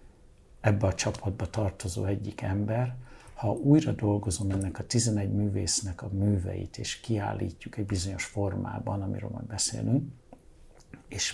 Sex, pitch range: male, 100-115 Hz